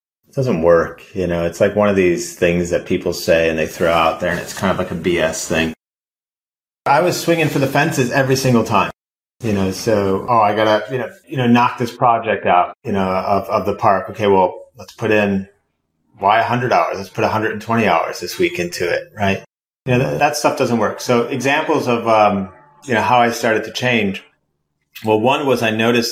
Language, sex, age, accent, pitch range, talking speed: English, male, 30-49, American, 100-125 Hz, 225 wpm